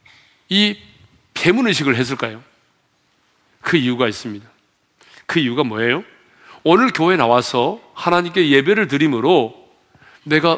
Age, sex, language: 40-59, male, Korean